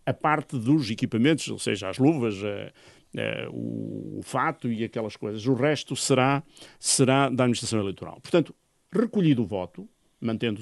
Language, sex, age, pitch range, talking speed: Portuguese, male, 50-69, 110-160 Hz, 145 wpm